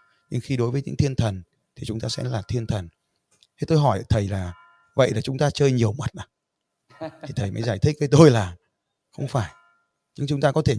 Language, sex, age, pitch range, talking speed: Vietnamese, male, 20-39, 115-150 Hz, 235 wpm